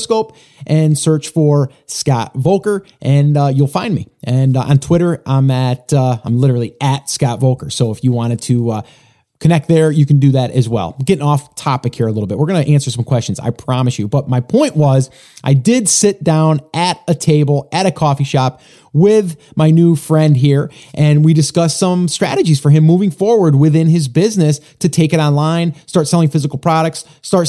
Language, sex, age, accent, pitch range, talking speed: English, male, 30-49, American, 140-175 Hz, 205 wpm